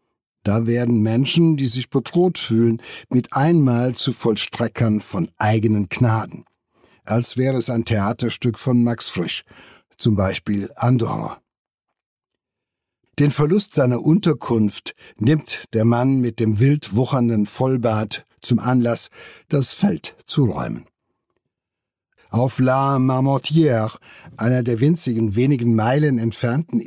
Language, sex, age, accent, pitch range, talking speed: German, male, 60-79, German, 115-135 Hz, 115 wpm